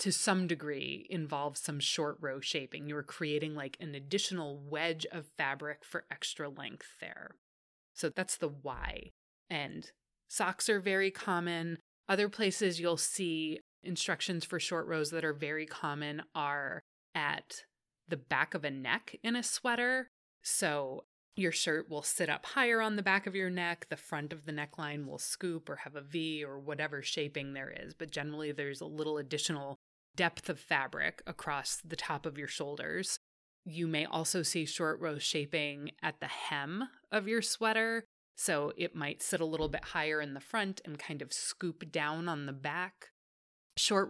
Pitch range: 145-180 Hz